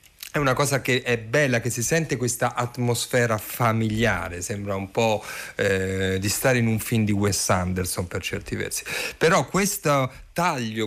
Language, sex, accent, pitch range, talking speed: Italian, male, native, 110-145 Hz, 165 wpm